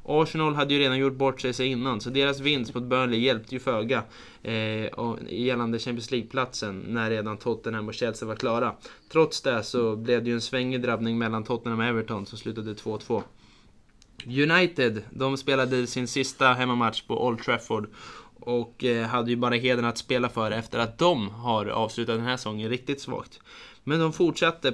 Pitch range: 115-130 Hz